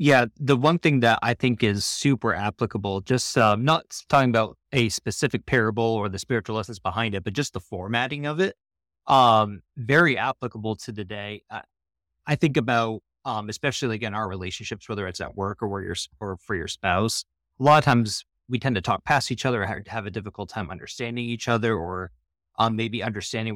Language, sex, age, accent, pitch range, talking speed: English, male, 30-49, American, 100-125 Hz, 195 wpm